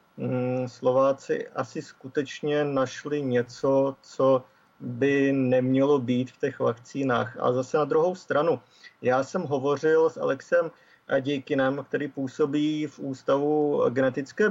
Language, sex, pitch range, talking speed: Czech, male, 130-150 Hz, 115 wpm